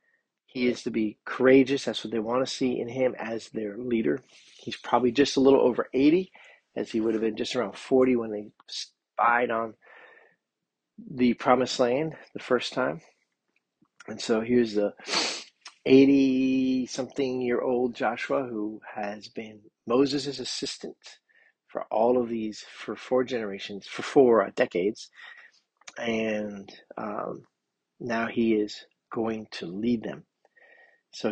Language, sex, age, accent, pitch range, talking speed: English, male, 40-59, American, 110-130 Hz, 140 wpm